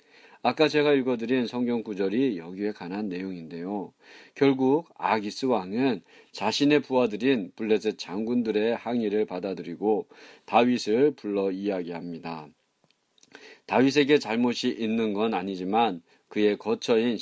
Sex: male